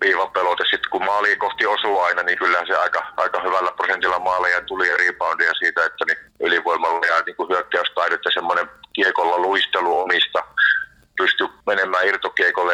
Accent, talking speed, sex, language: native, 150 wpm, male, Finnish